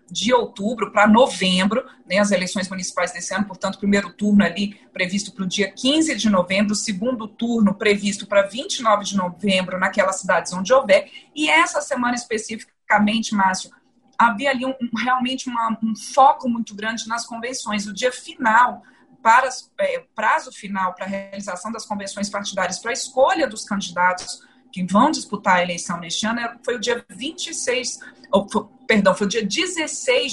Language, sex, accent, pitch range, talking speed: Portuguese, female, Brazilian, 200-260 Hz, 165 wpm